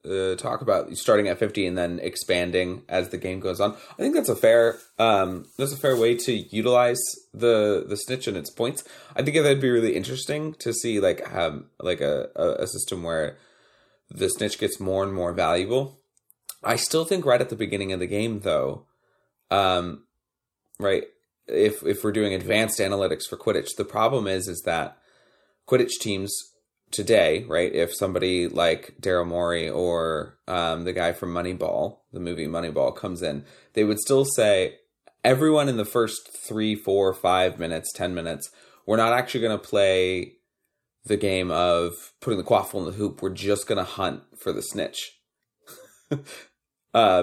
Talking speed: 175 wpm